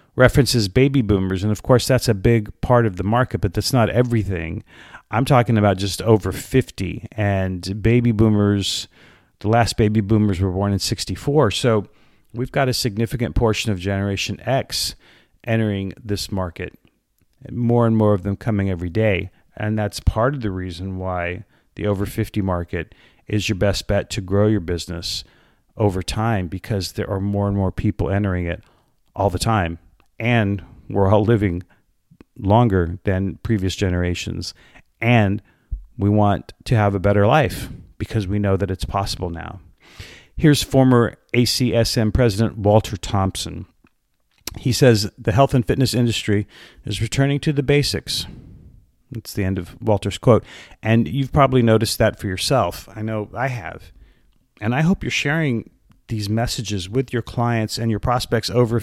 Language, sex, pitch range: English, male, 95-120 Hz